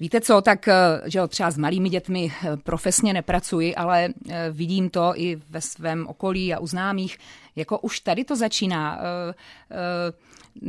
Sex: female